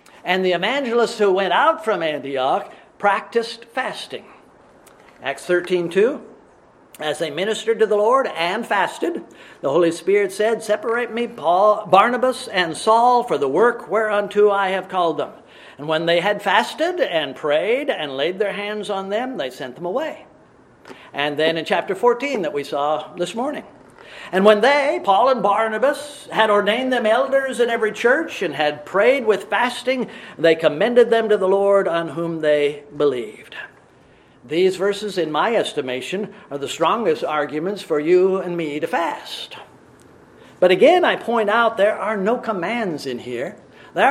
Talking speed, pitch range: 165 wpm, 175-235 Hz